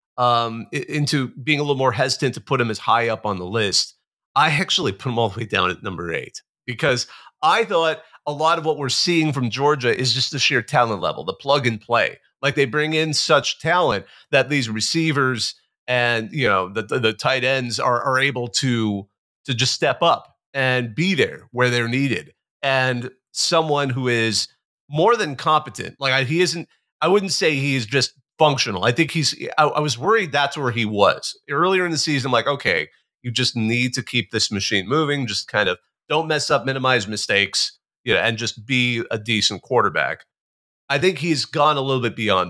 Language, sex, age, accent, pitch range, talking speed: English, male, 40-59, American, 115-145 Hz, 210 wpm